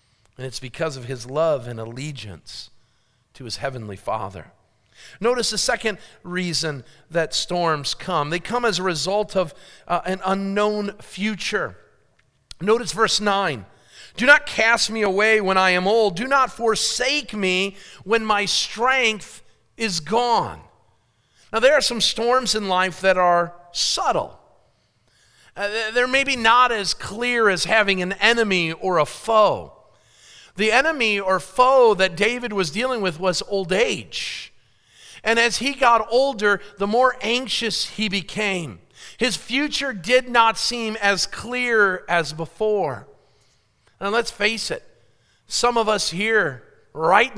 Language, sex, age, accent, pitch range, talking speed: English, male, 50-69, American, 165-225 Hz, 145 wpm